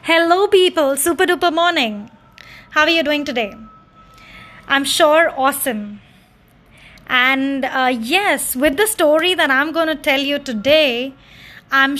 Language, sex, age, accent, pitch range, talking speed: English, female, 20-39, Indian, 250-310 Hz, 135 wpm